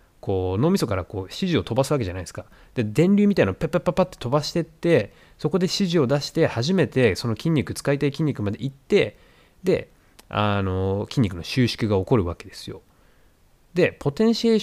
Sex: male